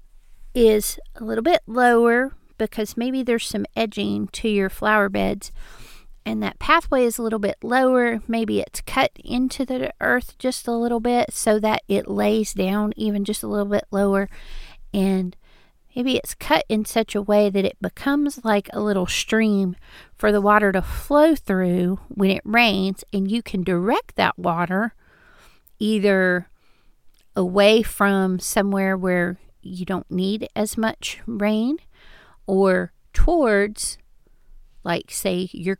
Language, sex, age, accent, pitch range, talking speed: English, female, 40-59, American, 190-225 Hz, 150 wpm